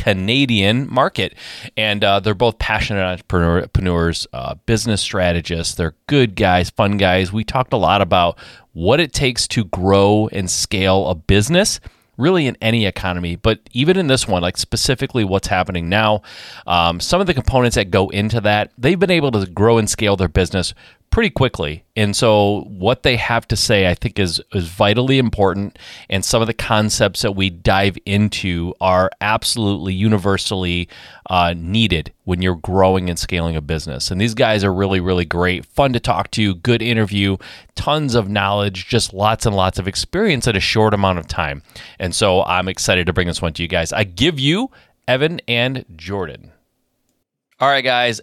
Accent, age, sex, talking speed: American, 30-49, male, 180 wpm